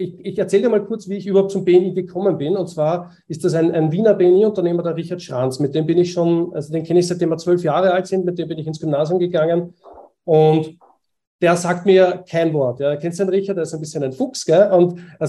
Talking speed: 260 wpm